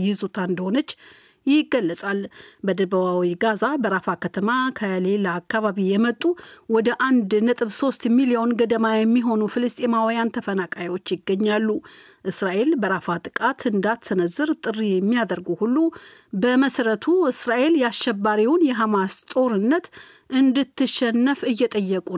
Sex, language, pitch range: female, Amharic, 195-255 Hz